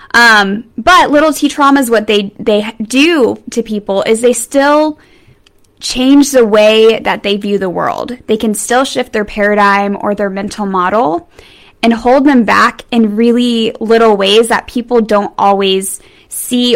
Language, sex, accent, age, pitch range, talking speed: English, female, American, 10-29, 205-245 Hz, 160 wpm